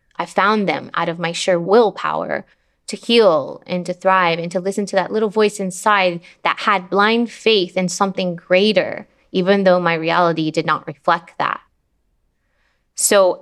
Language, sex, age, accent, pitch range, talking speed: English, female, 20-39, American, 175-205 Hz, 165 wpm